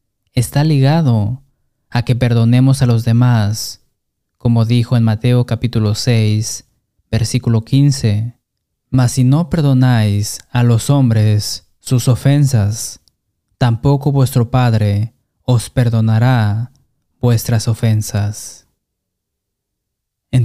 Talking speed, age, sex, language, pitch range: 95 wpm, 20-39, male, Spanish, 110-130 Hz